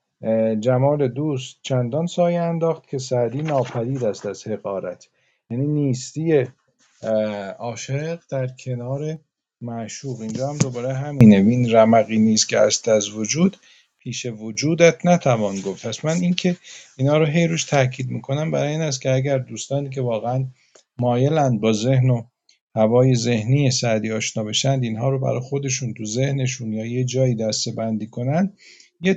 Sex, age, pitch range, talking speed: male, 50-69, 110-145 Hz, 140 wpm